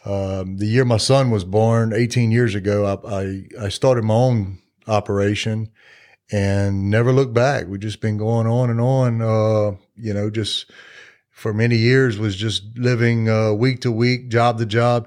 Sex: male